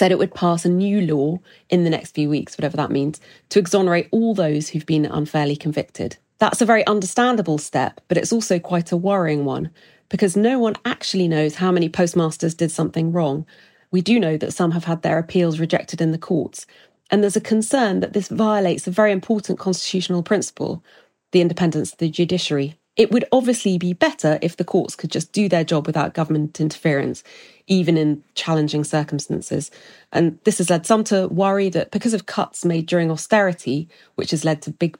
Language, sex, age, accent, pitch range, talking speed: English, female, 30-49, British, 160-200 Hz, 195 wpm